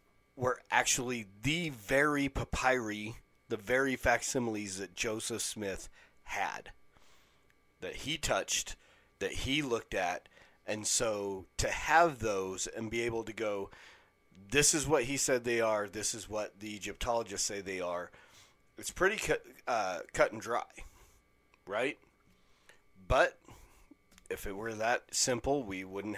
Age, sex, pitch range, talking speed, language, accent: 40-59, male, 105-130 Hz, 140 wpm, English, American